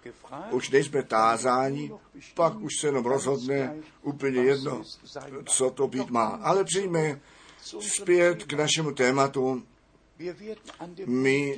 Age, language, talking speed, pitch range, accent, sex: 50-69, Czech, 110 wpm, 130-165 Hz, native, male